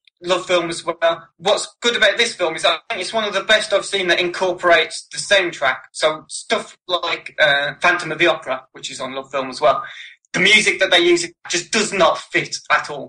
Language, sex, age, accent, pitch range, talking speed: English, male, 20-39, British, 145-185 Hz, 240 wpm